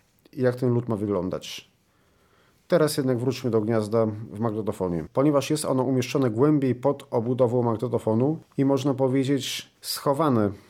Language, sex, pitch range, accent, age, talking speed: Polish, male, 120-140 Hz, native, 40-59, 135 wpm